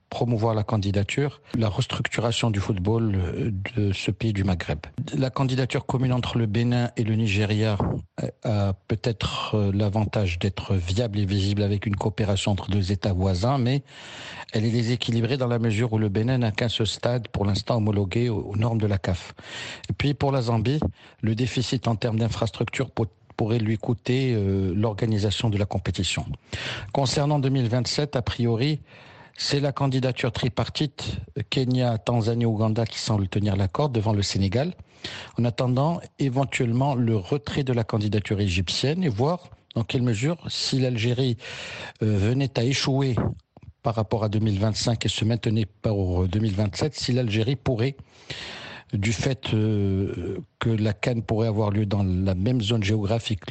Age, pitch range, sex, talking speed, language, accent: 60-79, 105-125 Hz, male, 150 wpm, French, French